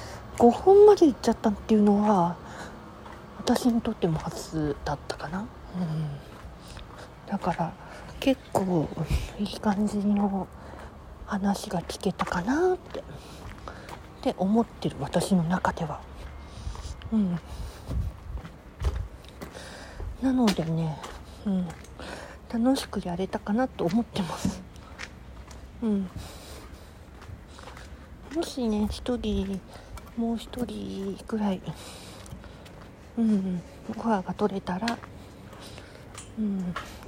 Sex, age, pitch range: female, 40-59, 165-215 Hz